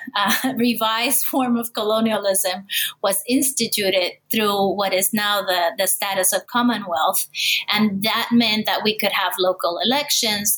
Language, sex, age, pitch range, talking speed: English, female, 20-39, 190-230 Hz, 140 wpm